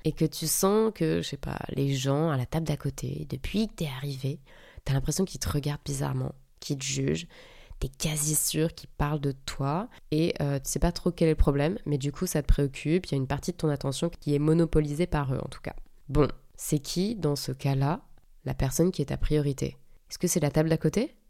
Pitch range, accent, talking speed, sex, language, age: 135-160 Hz, French, 240 wpm, female, French, 20-39